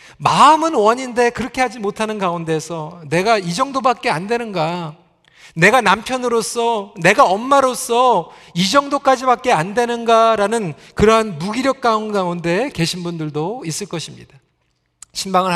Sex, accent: male, native